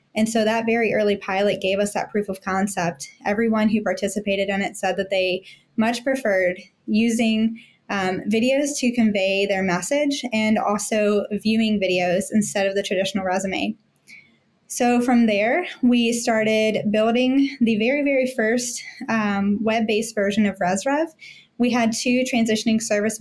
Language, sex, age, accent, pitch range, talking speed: English, female, 10-29, American, 205-230 Hz, 150 wpm